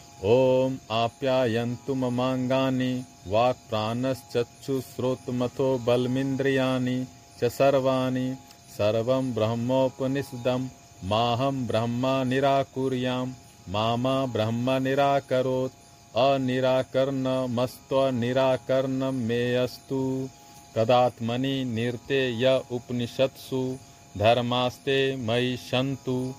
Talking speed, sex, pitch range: 55 wpm, male, 120-135 Hz